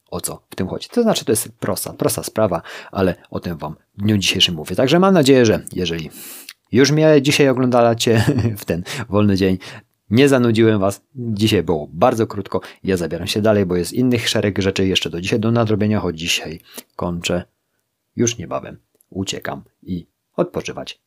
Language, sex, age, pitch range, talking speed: Polish, male, 30-49, 90-115 Hz, 175 wpm